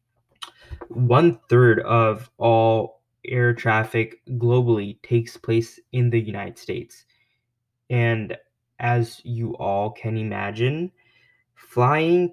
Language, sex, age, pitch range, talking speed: English, male, 20-39, 115-125 Hz, 90 wpm